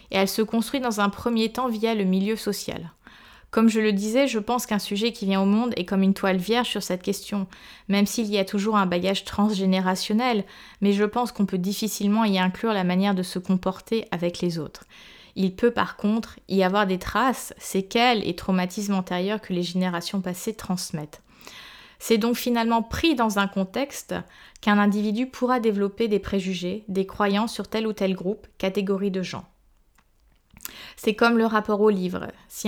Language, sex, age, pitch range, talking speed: French, female, 20-39, 190-225 Hz, 190 wpm